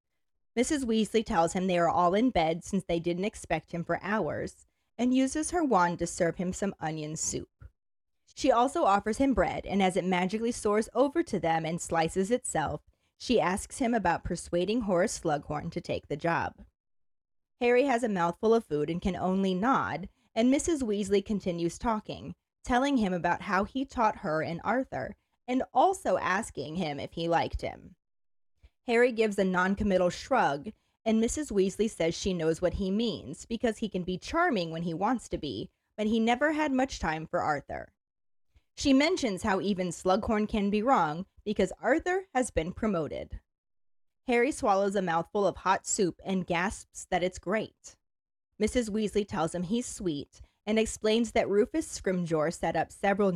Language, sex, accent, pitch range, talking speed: English, female, American, 175-235 Hz, 175 wpm